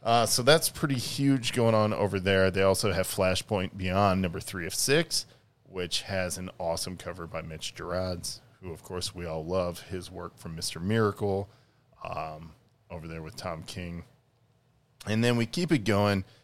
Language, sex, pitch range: English, male, 90-115 Hz